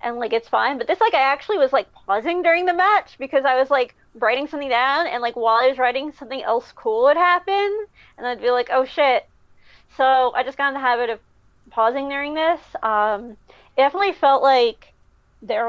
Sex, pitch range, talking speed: female, 235-290 Hz, 215 wpm